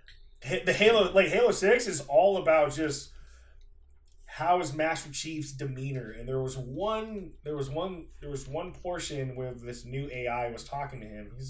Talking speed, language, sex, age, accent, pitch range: 175 wpm, English, male, 20-39, American, 100-160 Hz